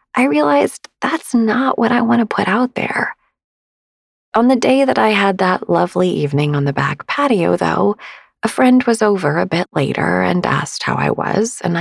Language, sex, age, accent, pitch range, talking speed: English, female, 30-49, American, 155-225 Hz, 190 wpm